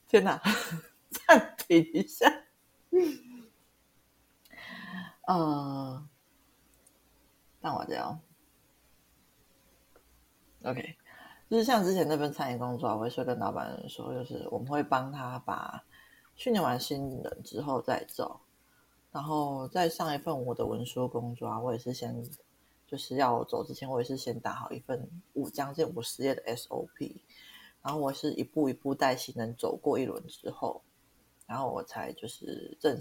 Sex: female